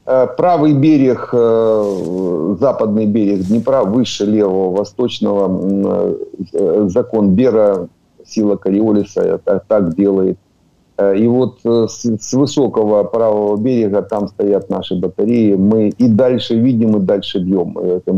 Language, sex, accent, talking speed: Ukrainian, male, native, 110 wpm